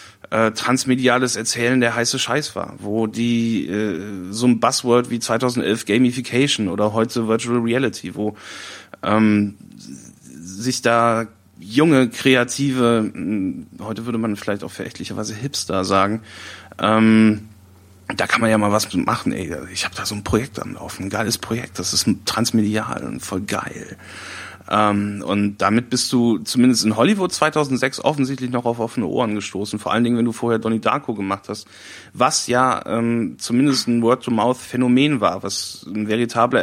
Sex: male